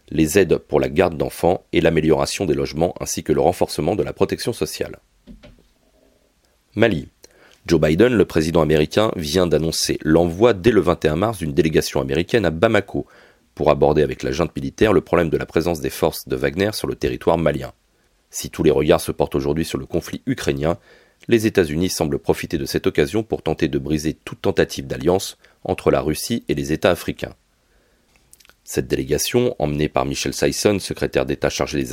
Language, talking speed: French, 180 wpm